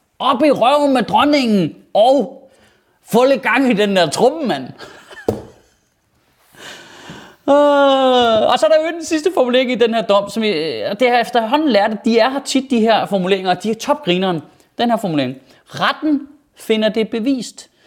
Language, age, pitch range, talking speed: Danish, 30-49, 190-260 Hz, 175 wpm